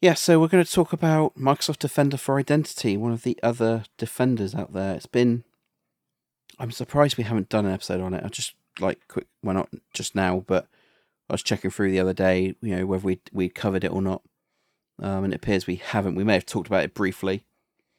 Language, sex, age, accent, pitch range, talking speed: English, male, 30-49, British, 95-110 Hz, 225 wpm